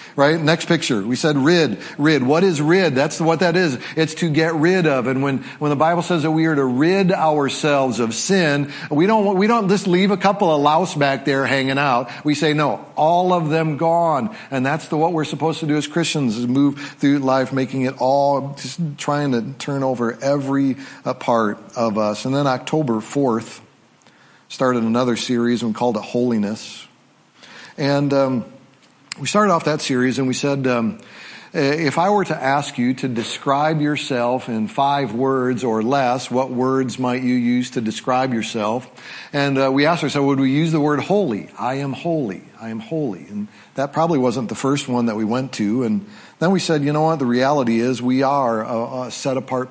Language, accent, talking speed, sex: English, American, 205 wpm, male